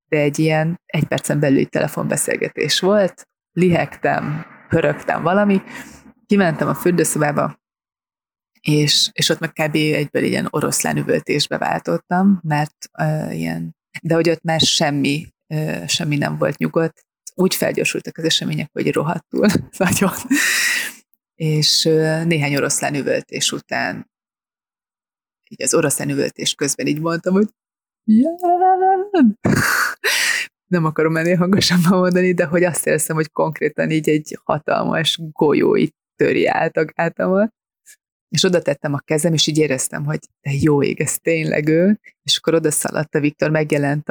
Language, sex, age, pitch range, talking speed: Hungarian, female, 30-49, 155-205 Hz, 135 wpm